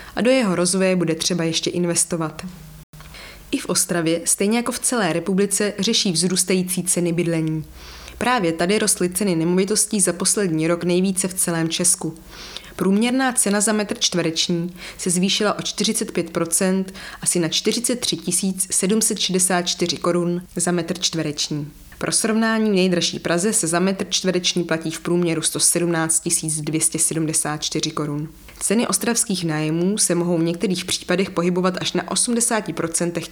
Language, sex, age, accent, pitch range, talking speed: English, female, 20-39, Czech, 165-200 Hz, 135 wpm